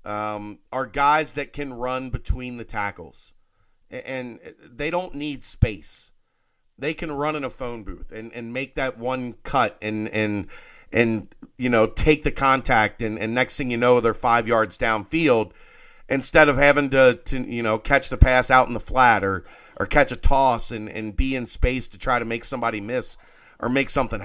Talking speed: 195 wpm